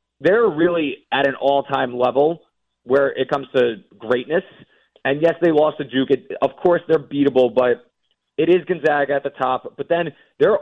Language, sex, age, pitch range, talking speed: English, male, 30-49, 125-145 Hz, 175 wpm